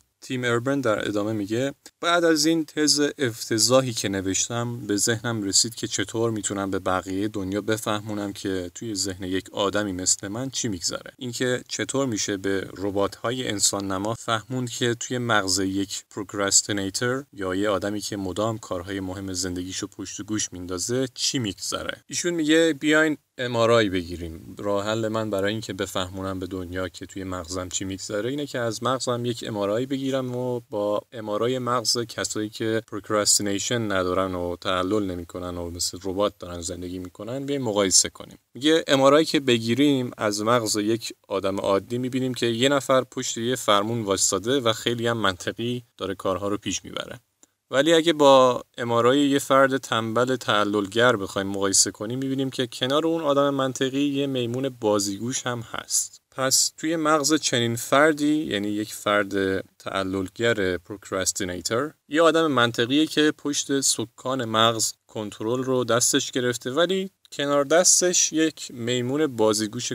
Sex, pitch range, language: male, 100-130 Hz, Persian